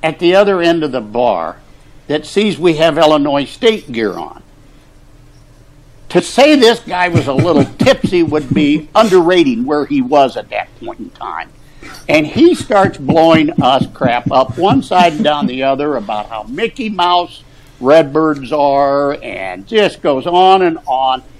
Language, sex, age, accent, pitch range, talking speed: English, male, 60-79, American, 145-210 Hz, 165 wpm